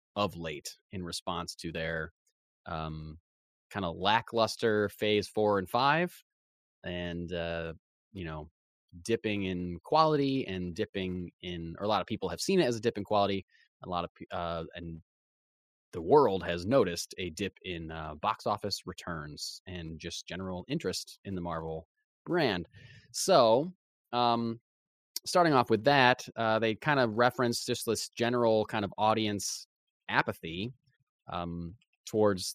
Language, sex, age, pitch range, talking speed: English, male, 20-39, 90-135 Hz, 150 wpm